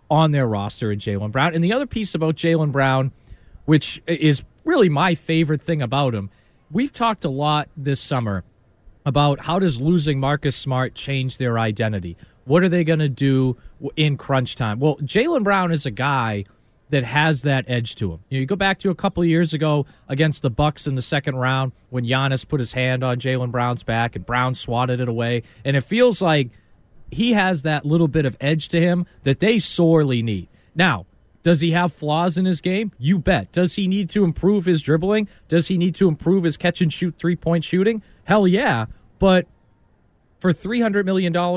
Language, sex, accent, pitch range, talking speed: English, male, American, 130-180 Hz, 200 wpm